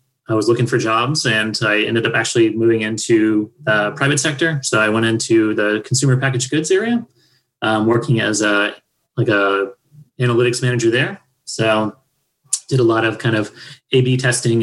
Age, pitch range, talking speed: 30-49, 110-135 Hz, 170 wpm